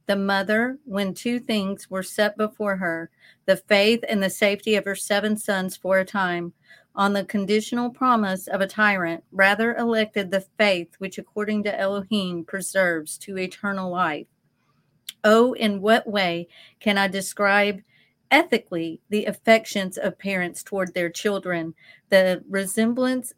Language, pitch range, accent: English, 185-215 Hz, American